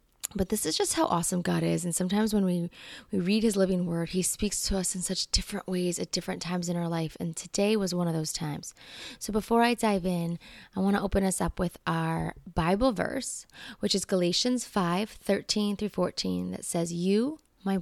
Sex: female